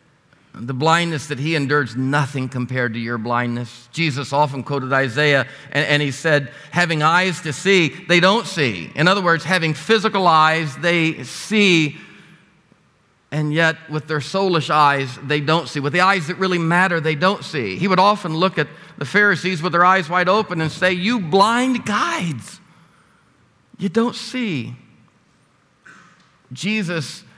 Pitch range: 130-165 Hz